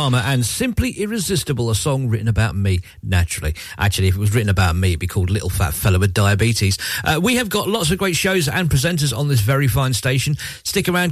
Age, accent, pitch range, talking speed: 40-59, British, 100-155 Hz, 220 wpm